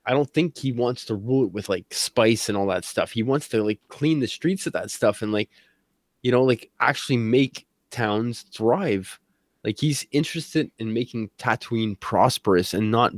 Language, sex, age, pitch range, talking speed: English, male, 20-39, 110-145 Hz, 195 wpm